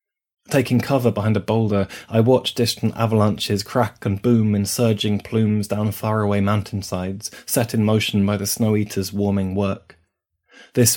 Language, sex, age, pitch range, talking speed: English, male, 20-39, 95-110 Hz, 150 wpm